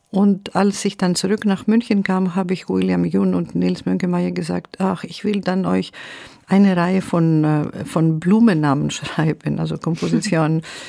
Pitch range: 155-200 Hz